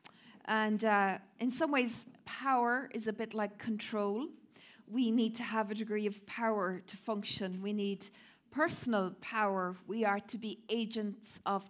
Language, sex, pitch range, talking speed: English, female, 205-245 Hz, 160 wpm